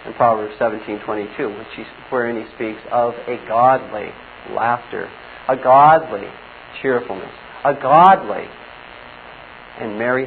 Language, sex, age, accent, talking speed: English, male, 50-69, American, 105 wpm